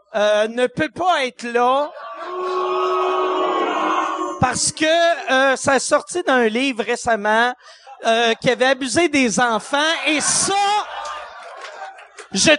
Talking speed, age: 115 wpm, 40-59